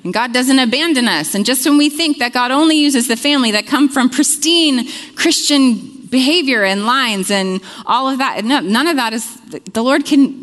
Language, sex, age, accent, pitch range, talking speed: English, female, 30-49, American, 170-255 Hz, 200 wpm